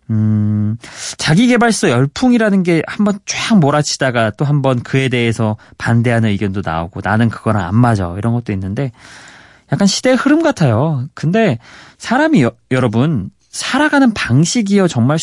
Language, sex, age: Korean, male, 30-49